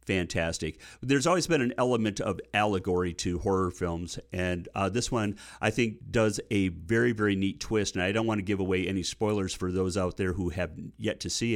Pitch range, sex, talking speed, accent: 90-110 Hz, male, 215 wpm, American